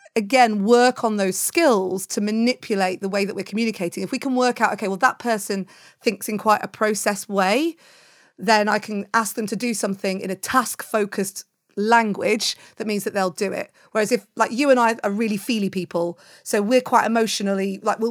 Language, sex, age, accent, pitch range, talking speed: English, female, 30-49, British, 210-270 Hz, 200 wpm